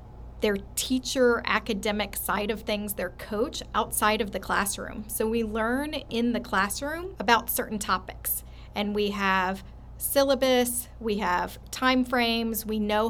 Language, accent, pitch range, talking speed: English, American, 200-230 Hz, 140 wpm